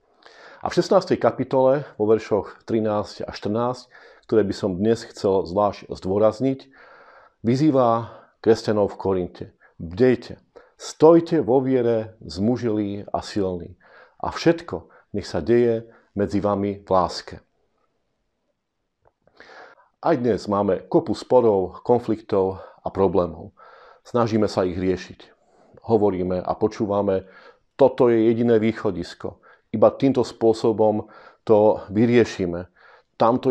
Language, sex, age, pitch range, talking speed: Slovak, male, 40-59, 105-130 Hz, 110 wpm